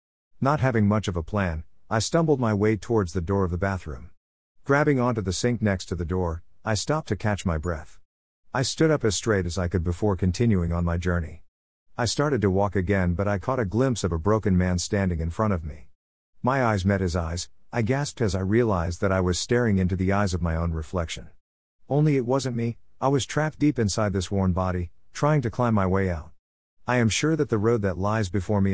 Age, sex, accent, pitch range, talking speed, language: 50-69, male, American, 85-115 Hz, 230 wpm, English